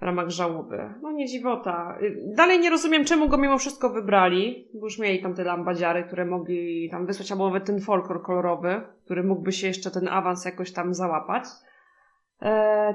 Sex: female